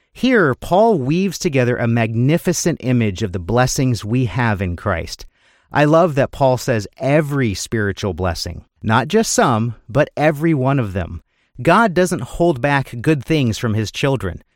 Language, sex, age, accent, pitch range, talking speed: English, male, 40-59, American, 110-155 Hz, 160 wpm